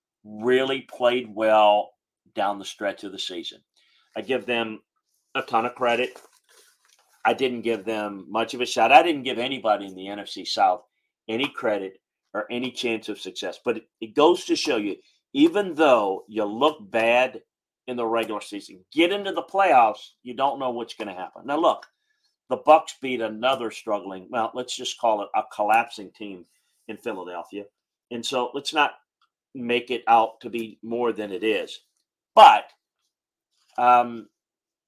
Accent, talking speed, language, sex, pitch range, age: American, 165 wpm, English, male, 110-130 Hz, 40-59